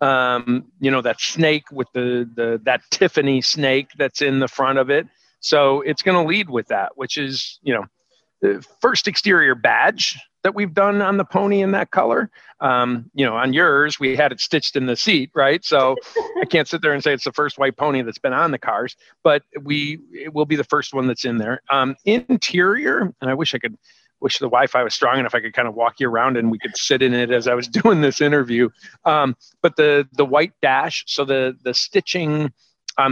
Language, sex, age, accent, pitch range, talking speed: English, male, 50-69, American, 125-160 Hz, 225 wpm